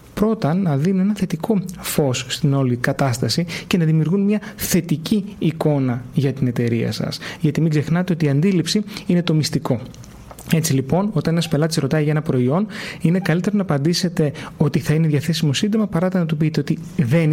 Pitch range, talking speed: 145-185 Hz, 180 wpm